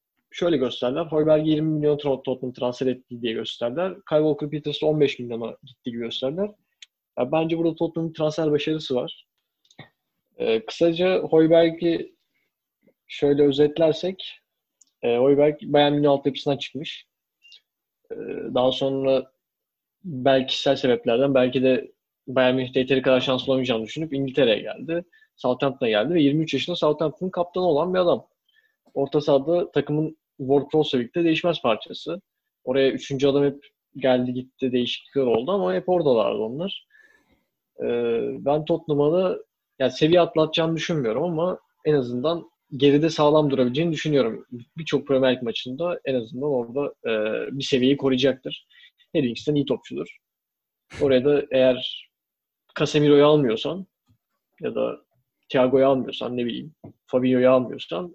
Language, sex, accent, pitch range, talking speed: Turkish, male, native, 130-165 Hz, 125 wpm